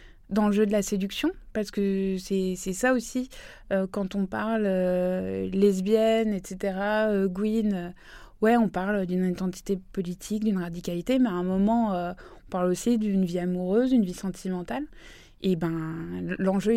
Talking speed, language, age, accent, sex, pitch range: 170 wpm, French, 20-39, French, female, 185-210 Hz